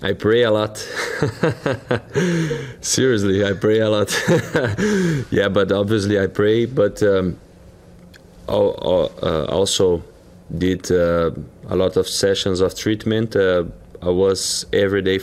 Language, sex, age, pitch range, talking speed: English, male, 20-39, 95-110 Hz, 120 wpm